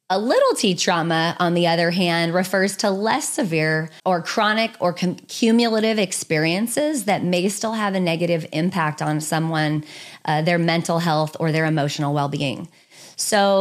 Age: 30-49